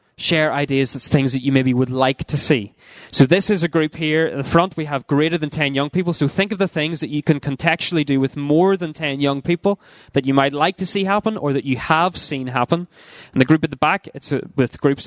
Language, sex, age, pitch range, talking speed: English, male, 20-39, 130-160 Hz, 260 wpm